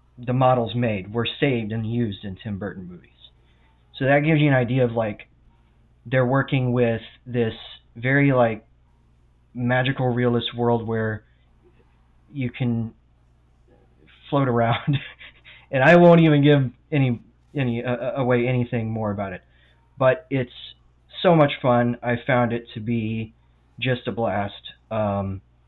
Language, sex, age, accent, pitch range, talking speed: English, male, 20-39, American, 90-125 Hz, 140 wpm